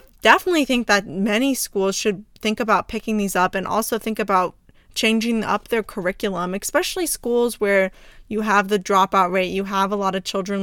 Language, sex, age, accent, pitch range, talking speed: English, female, 20-39, American, 190-240 Hz, 185 wpm